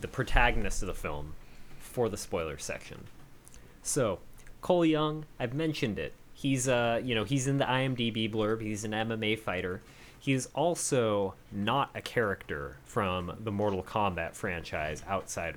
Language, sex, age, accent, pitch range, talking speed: English, male, 30-49, American, 105-140 Hz, 155 wpm